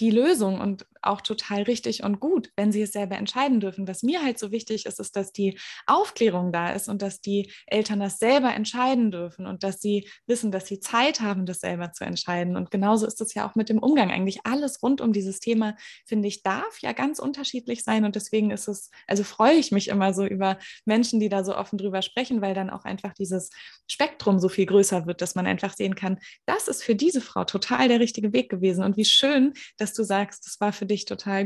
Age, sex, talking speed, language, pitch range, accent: 20-39, female, 235 wpm, German, 195-235 Hz, German